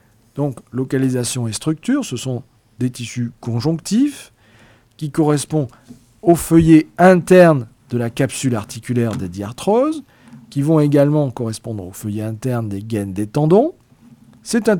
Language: French